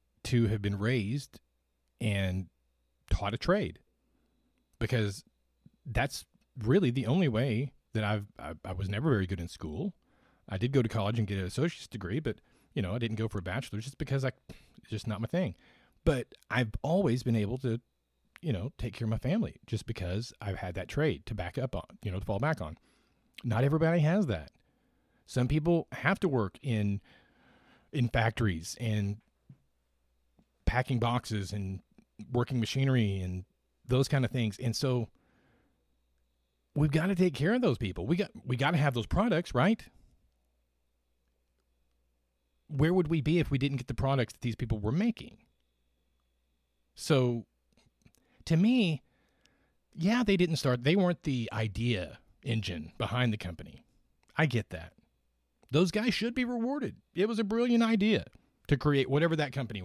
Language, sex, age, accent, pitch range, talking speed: English, male, 40-59, American, 90-140 Hz, 170 wpm